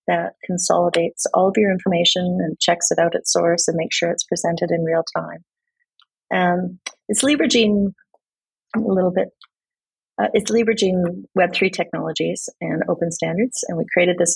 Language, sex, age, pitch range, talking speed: English, female, 40-59, 170-215 Hz, 165 wpm